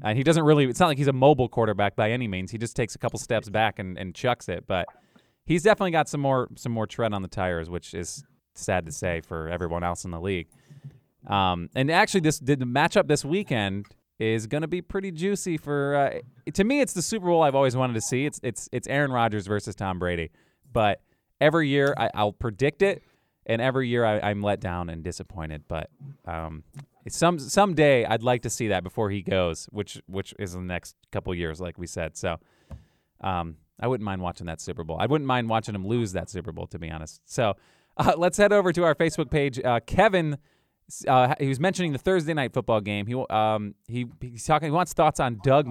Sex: male